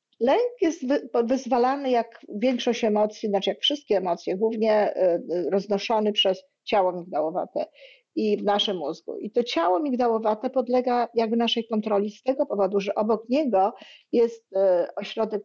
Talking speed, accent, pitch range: 135 wpm, native, 200-255 Hz